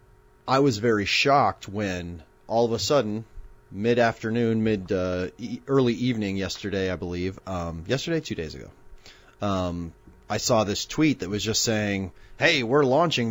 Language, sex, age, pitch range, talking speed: English, male, 30-49, 90-120 Hz, 145 wpm